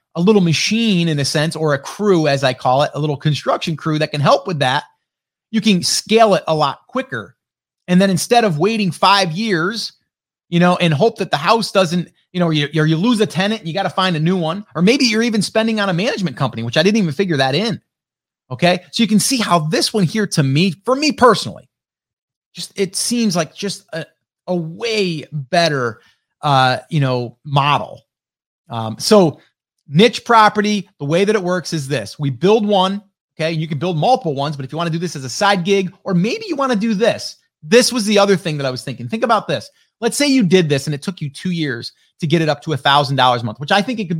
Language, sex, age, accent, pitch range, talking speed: English, male, 30-49, American, 155-215 Hz, 240 wpm